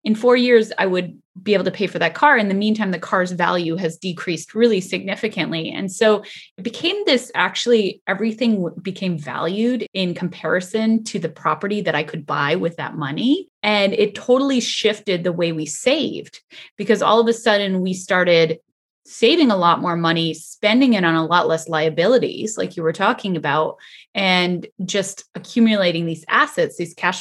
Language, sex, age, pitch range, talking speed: English, female, 20-39, 170-220 Hz, 180 wpm